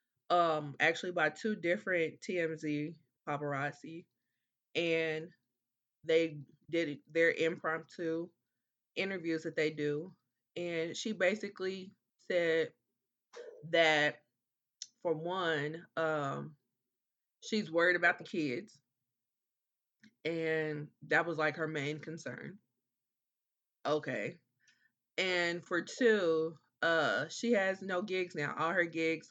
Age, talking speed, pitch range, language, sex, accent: 20-39, 100 wpm, 145-195 Hz, English, female, American